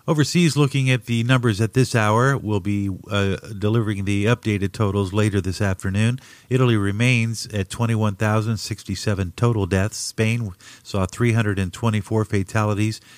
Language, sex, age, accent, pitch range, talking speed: English, male, 50-69, American, 95-115 Hz, 130 wpm